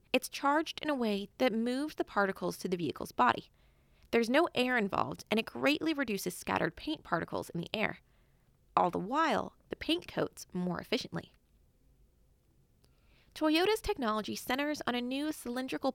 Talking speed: 160 wpm